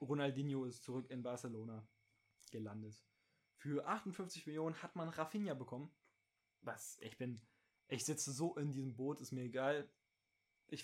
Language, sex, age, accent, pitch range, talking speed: German, male, 20-39, German, 125-145 Hz, 145 wpm